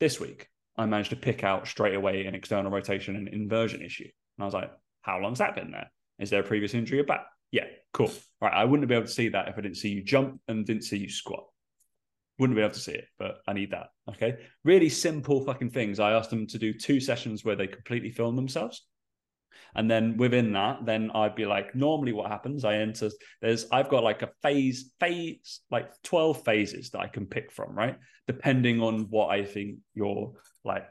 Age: 20-39